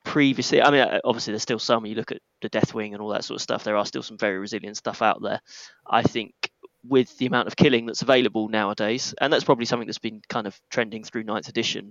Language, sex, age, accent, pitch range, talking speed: English, male, 20-39, British, 105-120 Hz, 245 wpm